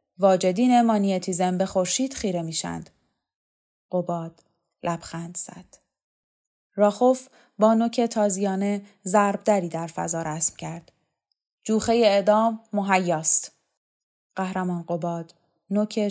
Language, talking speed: Persian, 90 wpm